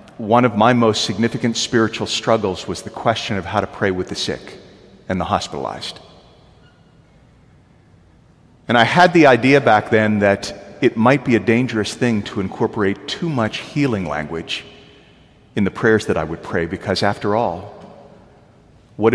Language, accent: English, American